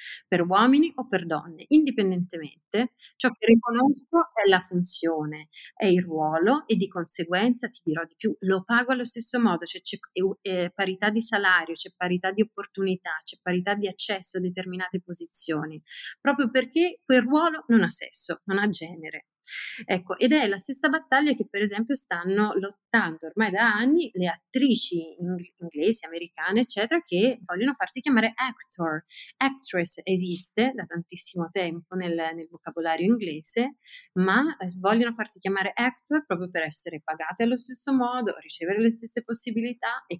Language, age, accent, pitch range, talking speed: Italian, 30-49, native, 170-225 Hz, 155 wpm